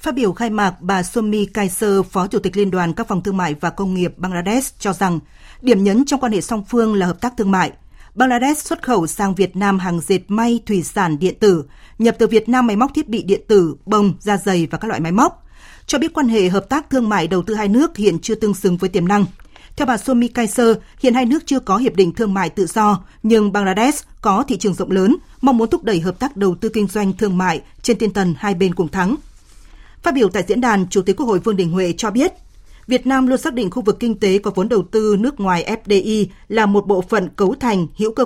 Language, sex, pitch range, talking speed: Vietnamese, female, 190-240 Hz, 255 wpm